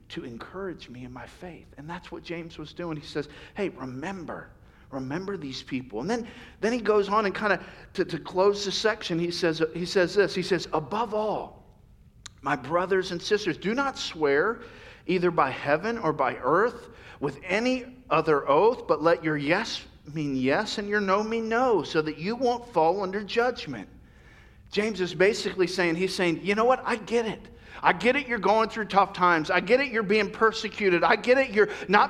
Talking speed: 200 wpm